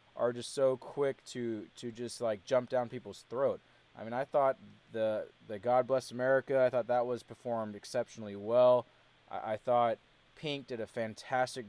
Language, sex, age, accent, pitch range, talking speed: English, male, 20-39, American, 115-130 Hz, 180 wpm